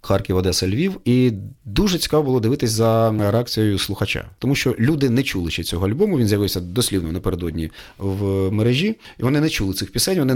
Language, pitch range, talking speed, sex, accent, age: Ukrainian, 115-150 Hz, 180 wpm, male, native, 30-49